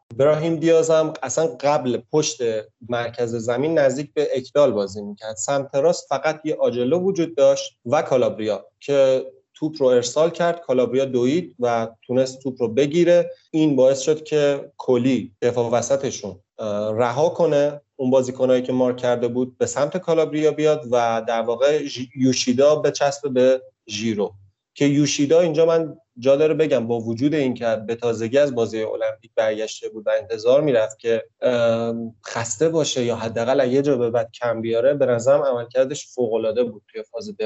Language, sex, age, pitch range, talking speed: Persian, male, 30-49, 120-155 Hz, 155 wpm